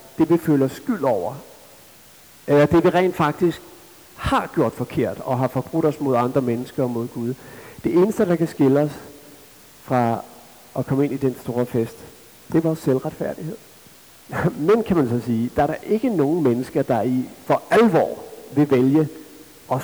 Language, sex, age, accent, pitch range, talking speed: Danish, male, 60-79, native, 130-175 Hz, 180 wpm